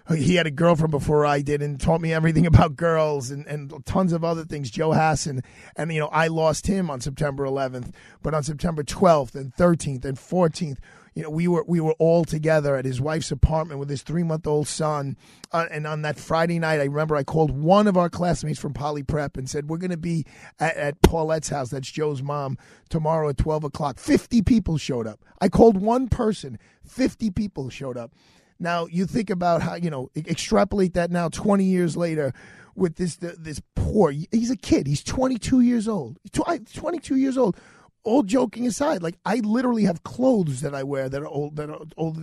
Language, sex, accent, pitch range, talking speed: English, male, American, 150-195 Hz, 210 wpm